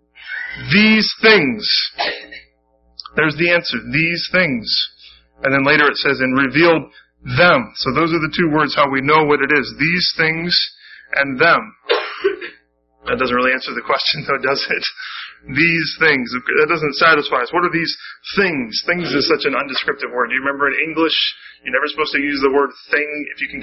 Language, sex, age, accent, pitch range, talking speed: English, male, 20-39, American, 125-165 Hz, 185 wpm